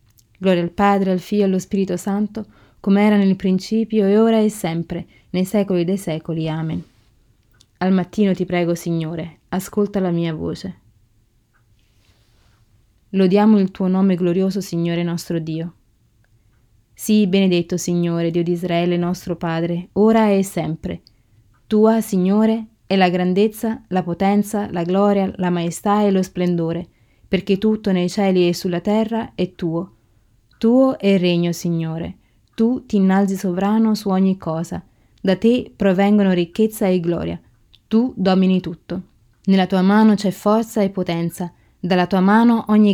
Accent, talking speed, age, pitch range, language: native, 145 wpm, 20-39, 170-200 Hz, Italian